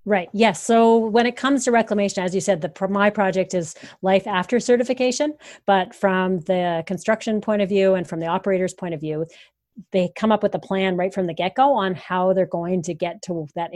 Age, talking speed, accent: 30-49, 225 wpm, American